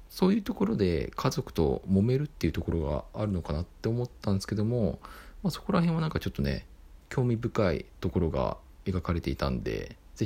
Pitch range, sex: 80-110 Hz, male